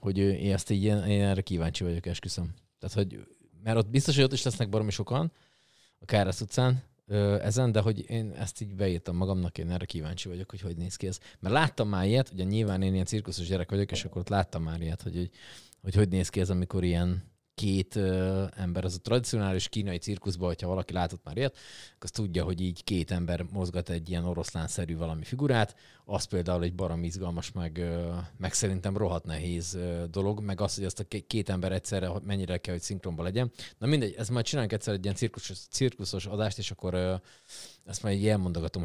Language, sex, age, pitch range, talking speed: Hungarian, male, 30-49, 90-110 Hz, 200 wpm